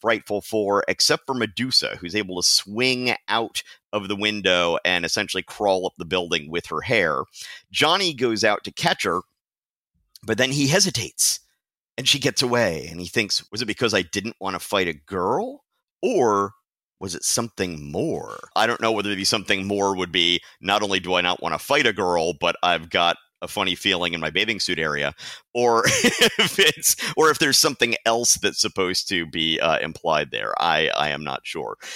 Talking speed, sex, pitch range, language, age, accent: 195 wpm, male, 95-130 Hz, English, 50-69, American